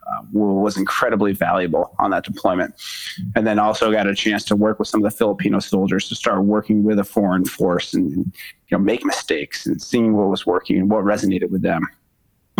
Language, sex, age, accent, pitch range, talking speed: English, male, 30-49, American, 95-105 Hz, 215 wpm